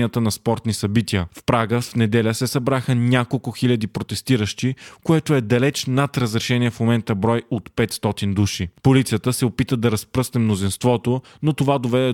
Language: Bulgarian